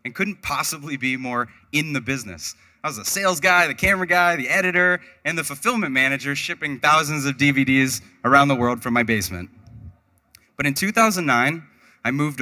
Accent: American